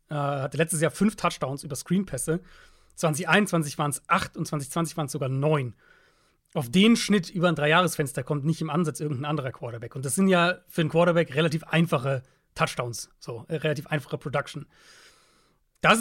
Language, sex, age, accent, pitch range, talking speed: German, male, 40-59, German, 150-185 Hz, 170 wpm